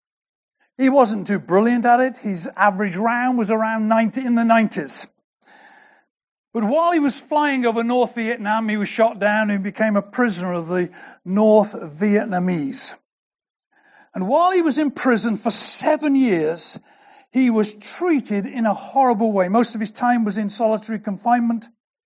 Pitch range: 220-285 Hz